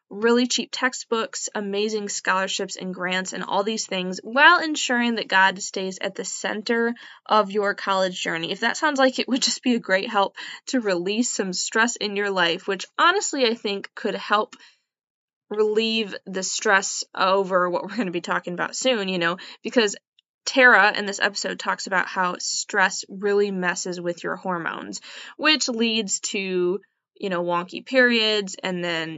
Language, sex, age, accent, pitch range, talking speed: English, female, 10-29, American, 185-230 Hz, 175 wpm